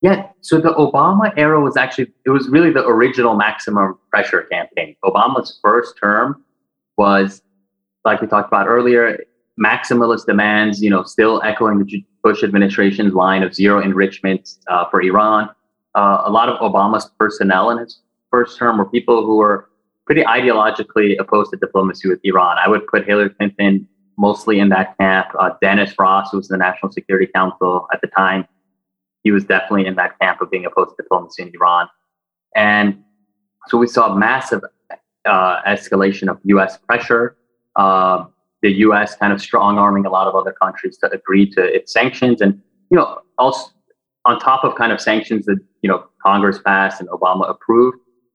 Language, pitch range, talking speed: English, 95-115 Hz, 170 wpm